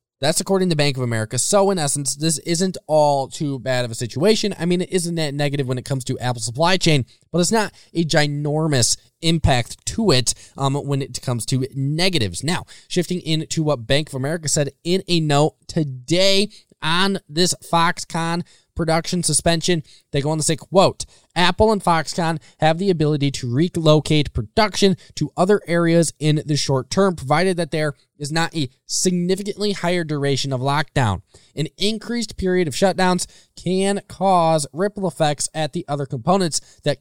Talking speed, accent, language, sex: 175 wpm, American, English, male